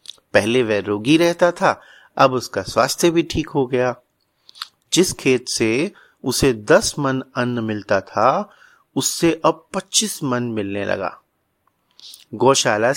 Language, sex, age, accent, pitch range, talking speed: Hindi, male, 30-49, native, 125-165 Hz, 130 wpm